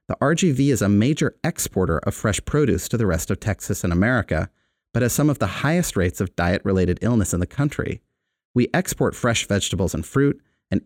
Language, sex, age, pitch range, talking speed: English, male, 30-49, 95-130 Hz, 200 wpm